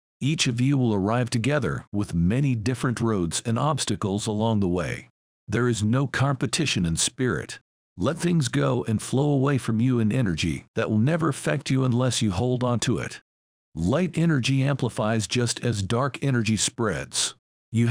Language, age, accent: English, 50-69, American